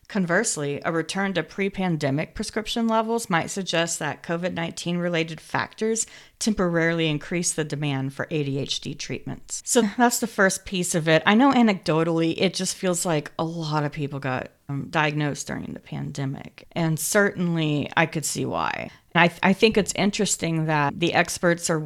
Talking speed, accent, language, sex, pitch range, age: 165 wpm, American, English, female, 150-185 Hz, 40-59